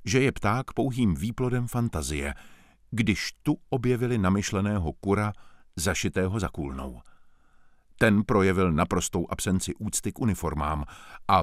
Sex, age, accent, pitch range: male, 50-69, native, 85-115 Hz